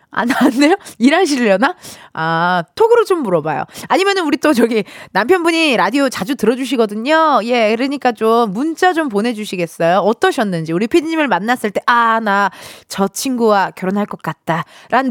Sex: female